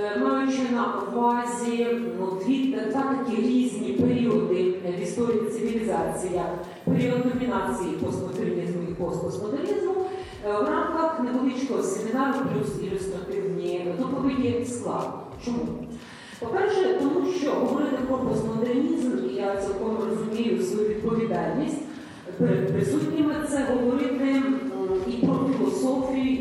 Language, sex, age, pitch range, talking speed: Ukrainian, female, 40-59, 210-270 Hz, 95 wpm